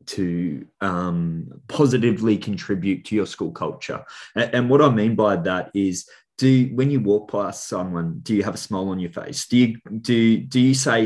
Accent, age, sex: Australian, 20-39, male